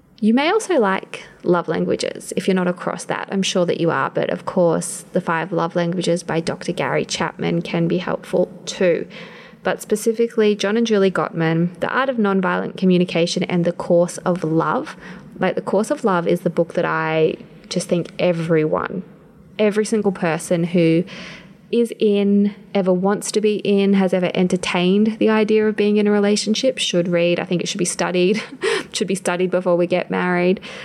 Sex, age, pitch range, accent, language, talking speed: female, 20-39, 180-215 Hz, Australian, English, 185 wpm